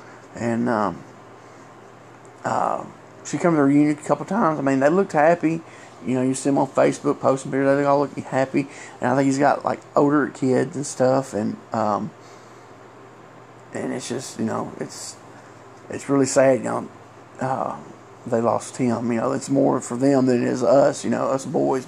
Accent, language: American, English